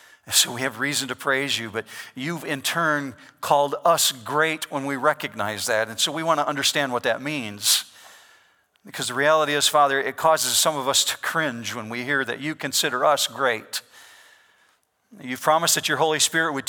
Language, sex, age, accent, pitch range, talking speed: English, male, 50-69, American, 135-200 Hz, 195 wpm